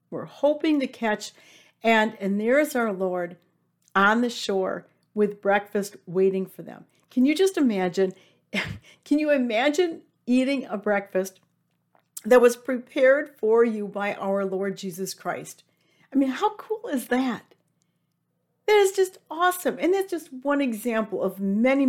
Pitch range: 195-260 Hz